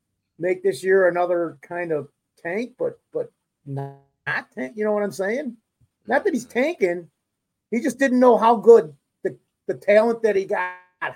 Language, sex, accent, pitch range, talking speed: English, male, American, 160-205 Hz, 170 wpm